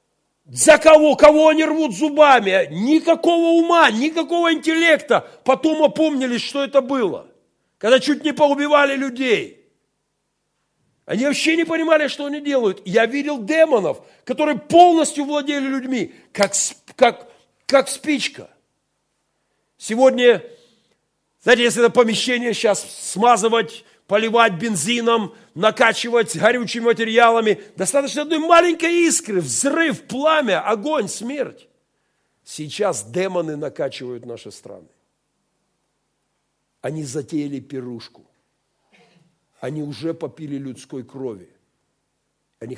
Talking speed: 100 wpm